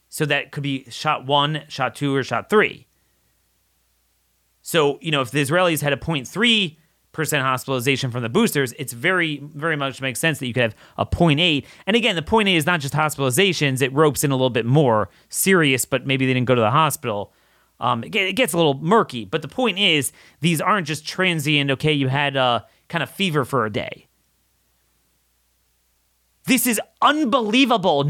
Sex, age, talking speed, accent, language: male, 30-49, 185 wpm, American, English